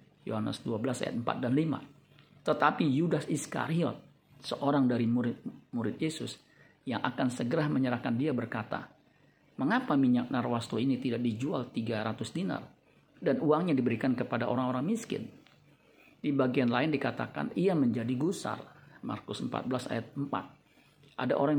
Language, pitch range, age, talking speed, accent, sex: Indonesian, 120-145 Hz, 50-69, 130 wpm, native, male